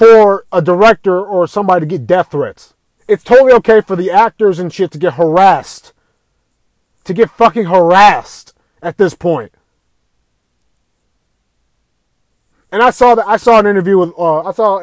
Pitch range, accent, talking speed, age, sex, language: 165-230 Hz, American, 160 wpm, 30-49, male, English